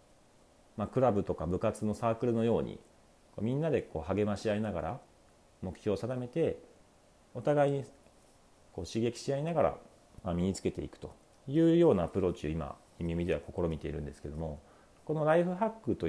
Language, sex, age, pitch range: Japanese, male, 40-59, 80-115 Hz